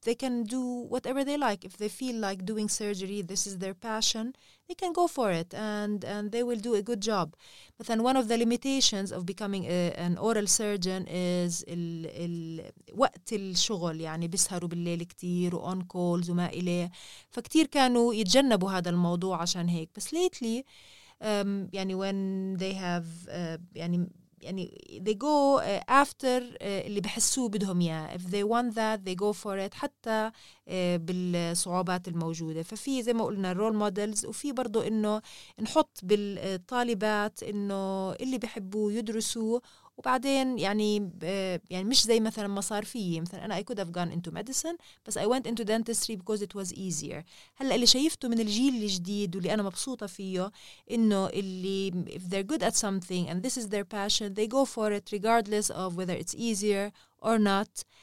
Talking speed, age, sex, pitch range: 130 wpm, 30-49, female, 180-230 Hz